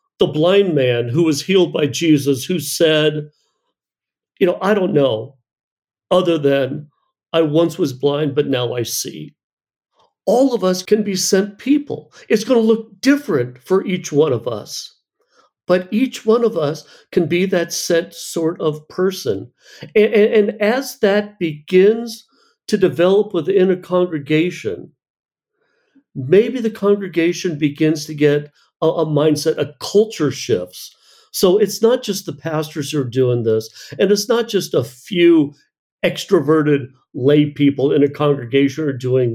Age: 50-69